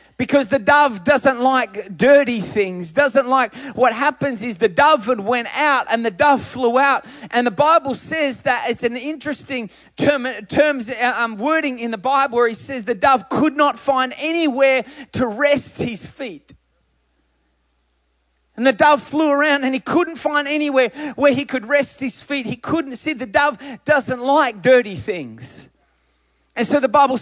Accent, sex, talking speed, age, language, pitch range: Australian, male, 170 wpm, 30-49, English, 225-280 Hz